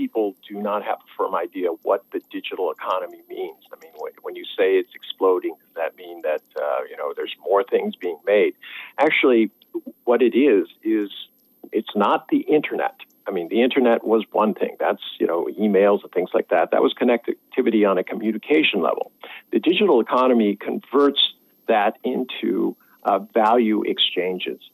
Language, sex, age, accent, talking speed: English, male, 50-69, American, 170 wpm